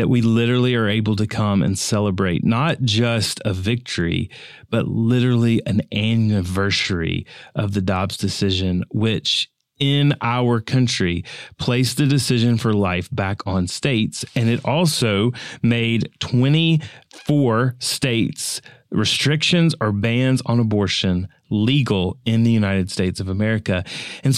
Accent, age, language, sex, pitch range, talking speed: American, 30-49, English, male, 110-140 Hz, 130 wpm